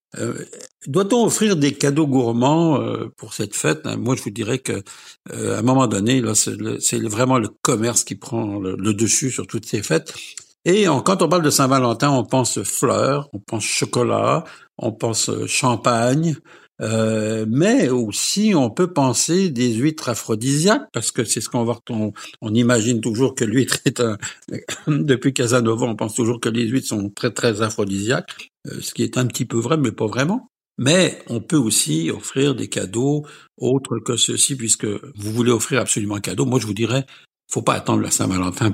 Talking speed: 190 wpm